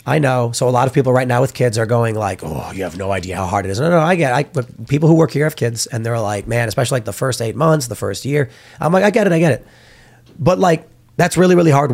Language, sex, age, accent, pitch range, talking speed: English, male, 30-49, American, 115-150 Hz, 315 wpm